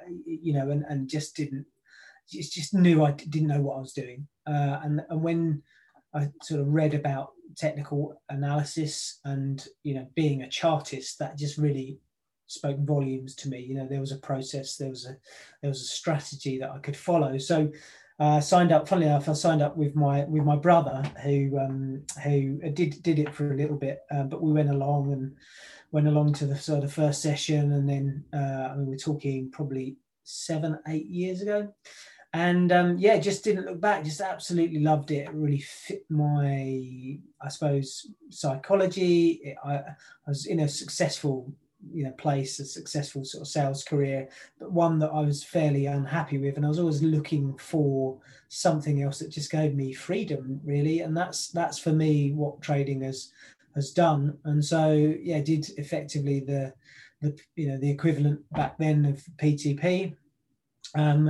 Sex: male